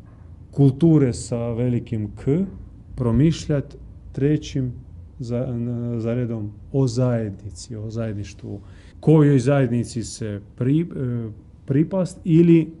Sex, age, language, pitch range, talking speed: male, 30-49, Croatian, 105-130 Hz, 85 wpm